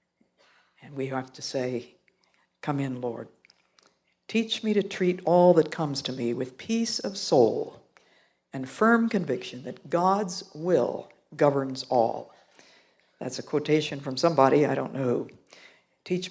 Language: English